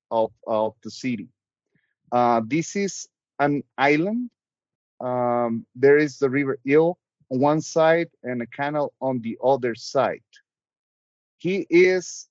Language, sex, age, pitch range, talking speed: English, male, 40-59, 125-165 Hz, 130 wpm